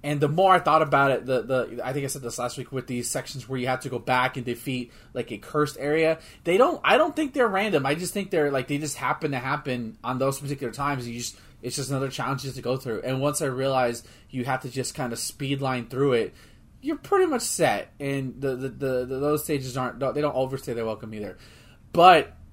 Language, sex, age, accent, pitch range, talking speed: English, male, 20-39, American, 125-150 Hz, 250 wpm